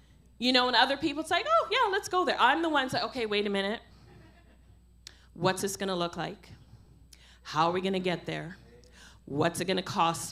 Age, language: 40-59, English